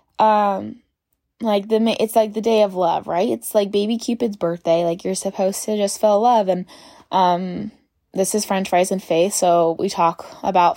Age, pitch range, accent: 10-29, 205-275 Hz, American